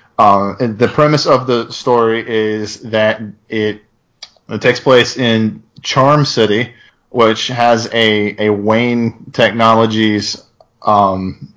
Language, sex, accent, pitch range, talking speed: English, male, American, 105-120 Hz, 115 wpm